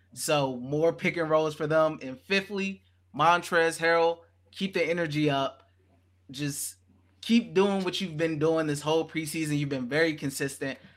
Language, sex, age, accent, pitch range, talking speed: English, male, 20-39, American, 135-165 Hz, 160 wpm